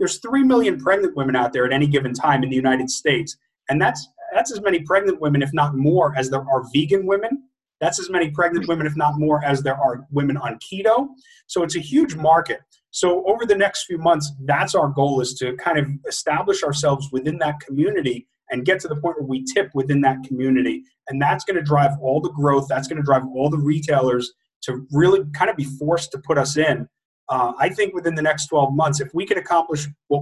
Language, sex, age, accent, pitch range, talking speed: English, male, 30-49, American, 135-170 Hz, 230 wpm